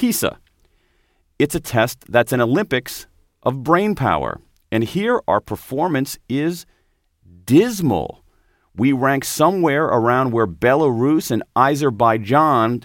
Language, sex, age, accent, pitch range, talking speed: English, male, 40-59, American, 90-140 Hz, 110 wpm